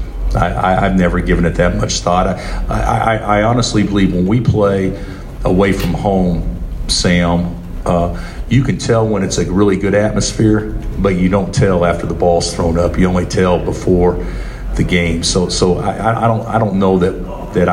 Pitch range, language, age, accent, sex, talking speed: 90-100 Hz, English, 40-59, American, male, 190 wpm